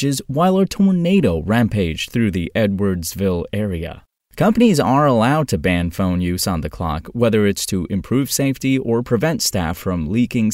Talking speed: 160 wpm